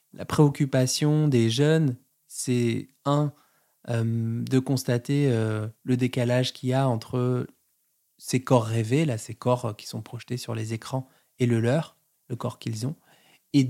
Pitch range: 115-135 Hz